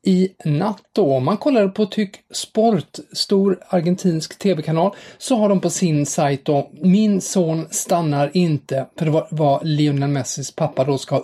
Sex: male